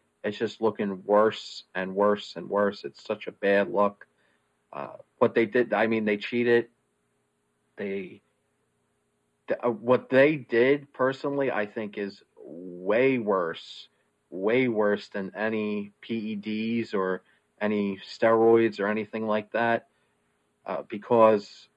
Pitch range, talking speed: 100-115 Hz, 125 wpm